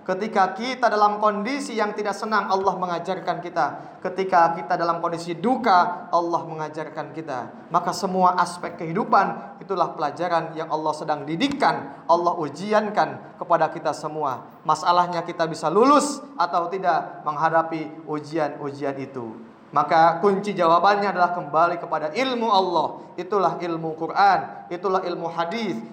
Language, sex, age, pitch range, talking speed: Indonesian, male, 20-39, 160-200 Hz, 130 wpm